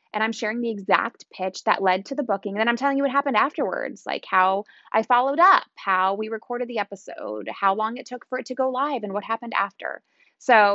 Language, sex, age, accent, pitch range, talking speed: English, female, 20-39, American, 195-265 Hz, 235 wpm